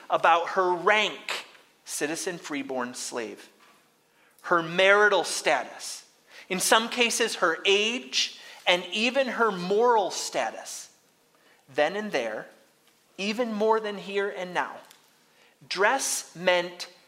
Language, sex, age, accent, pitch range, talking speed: English, male, 30-49, American, 135-220 Hz, 100 wpm